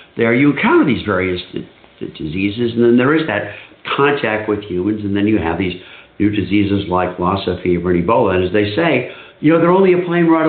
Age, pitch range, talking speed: 60-79, 100-155 Hz, 215 wpm